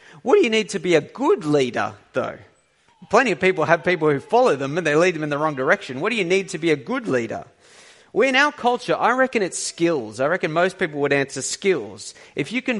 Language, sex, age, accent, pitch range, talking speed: English, male, 30-49, Australian, 160-220 Hz, 250 wpm